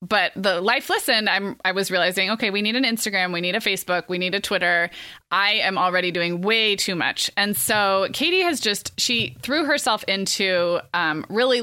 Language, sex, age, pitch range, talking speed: English, female, 20-39, 180-215 Hz, 200 wpm